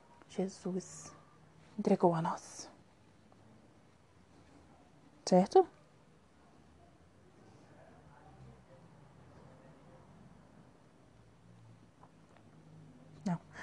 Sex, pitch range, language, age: female, 180-205 Hz, Portuguese, 20-39